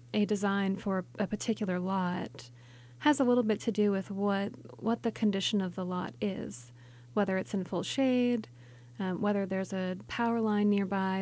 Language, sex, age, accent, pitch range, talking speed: English, female, 30-49, American, 185-220 Hz, 175 wpm